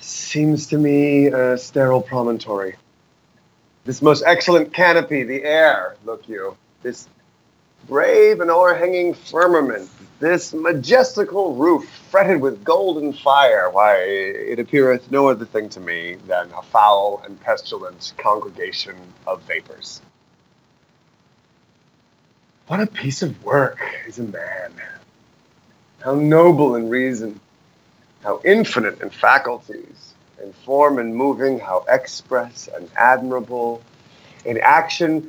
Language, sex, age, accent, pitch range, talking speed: English, male, 30-49, American, 120-175 Hz, 115 wpm